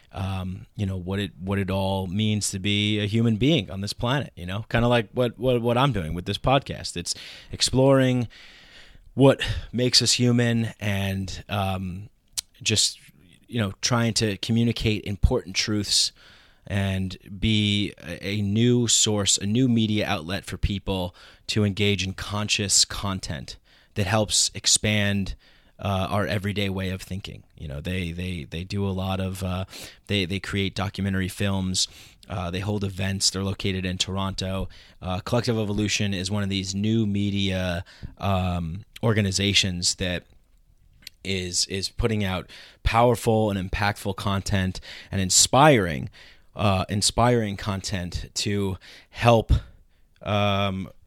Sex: male